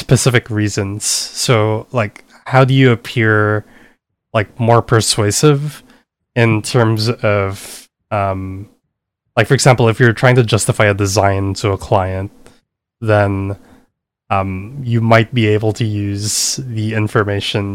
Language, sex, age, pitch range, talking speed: English, male, 20-39, 105-125 Hz, 130 wpm